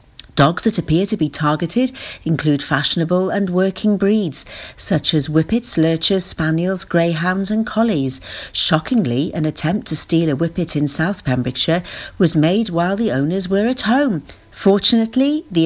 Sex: female